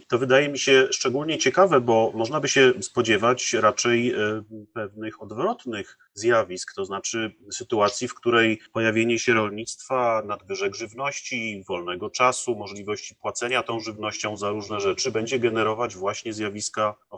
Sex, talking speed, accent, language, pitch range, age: male, 135 wpm, native, Polish, 105-125 Hz, 30-49